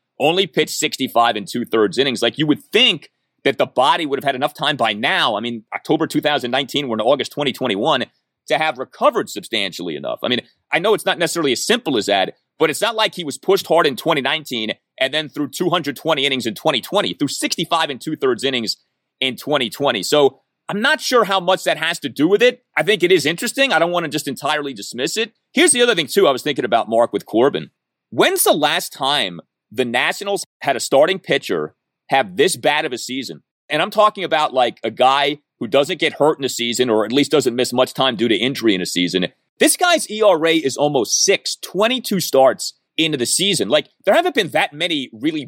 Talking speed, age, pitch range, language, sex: 220 wpm, 30-49, 125-185 Hz, English, male